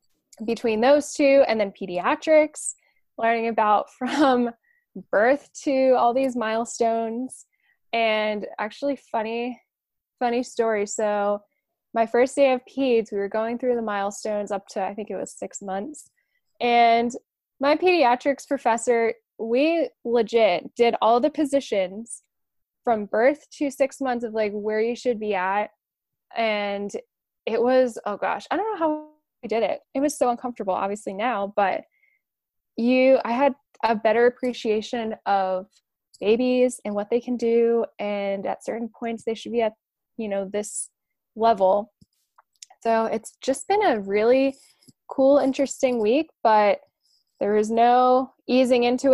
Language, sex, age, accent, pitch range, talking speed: English, female, 10-29, American, 215-265 Hz, 145 wpm